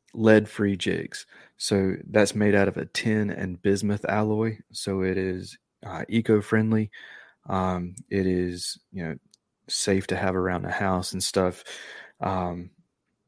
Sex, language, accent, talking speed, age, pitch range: male, English, American, 140 wpm, 20-39, 95-110 Hz